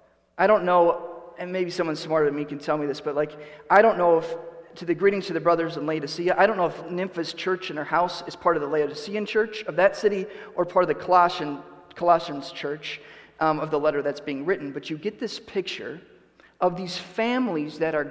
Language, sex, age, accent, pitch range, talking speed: English, male, 30-49, American, 150-180 Hz, 230 wpm